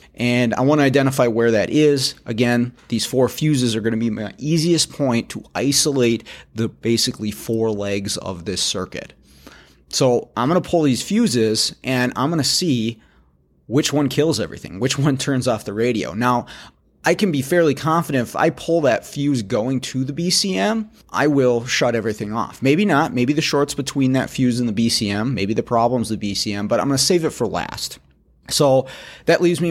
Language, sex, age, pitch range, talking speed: English, male, 30-49, 105-140 Hz, 190 wpm